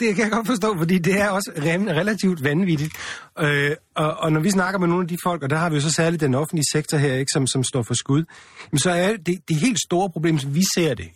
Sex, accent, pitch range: male, native, 125-180 Hz